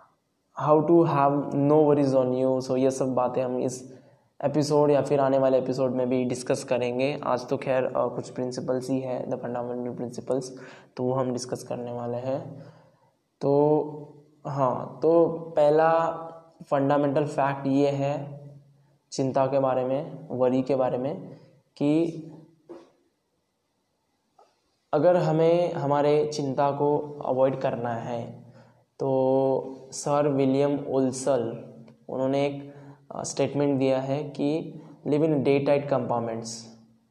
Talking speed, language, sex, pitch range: 130 wpm, Hindi, male, 130-145 Hz